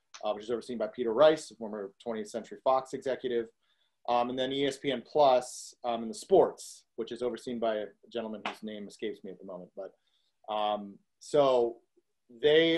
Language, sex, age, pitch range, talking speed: English, male, 30-49, 115-145 Hz, 180 wpm